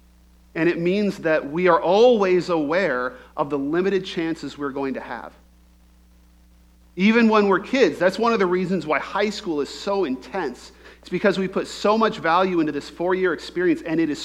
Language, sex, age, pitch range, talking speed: English, male, 40-59, 130-195 Hz, 190 wpm